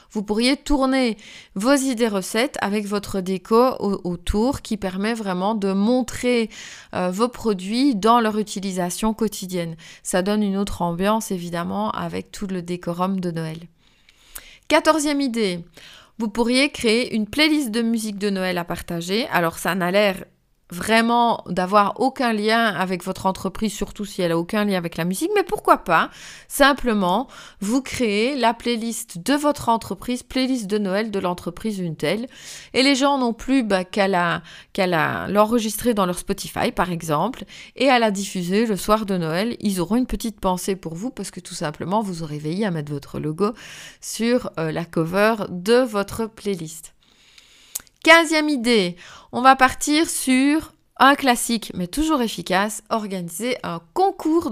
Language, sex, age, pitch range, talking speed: French, female, 30-49, 185-245 Hz, 160 wpm